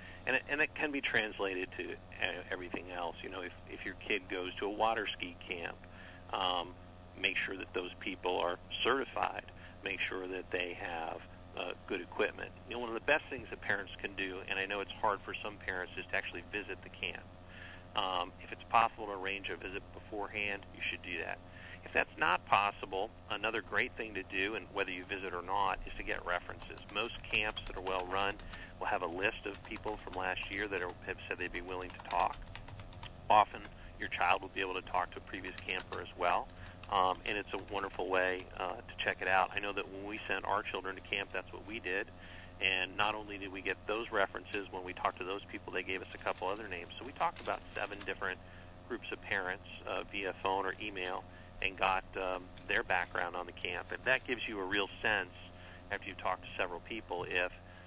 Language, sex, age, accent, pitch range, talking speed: English, male, 50-69, American, 90-100 Hz, 220 wpm